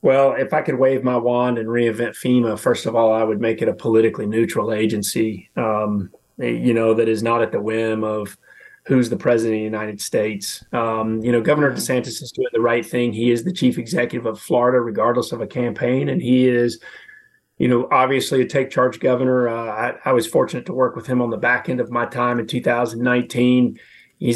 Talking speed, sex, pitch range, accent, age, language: 215 wpm, male, 120-140 Hz, American, 30-49, English